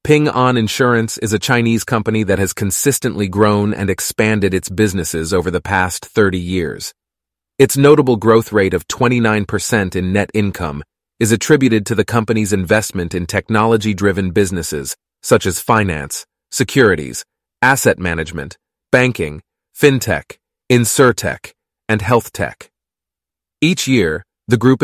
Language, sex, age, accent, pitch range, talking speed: English, male, 30-49, American, 95-120 Hz, 130 wpm